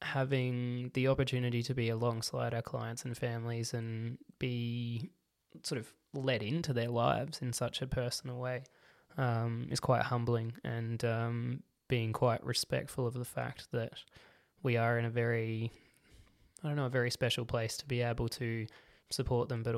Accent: Australian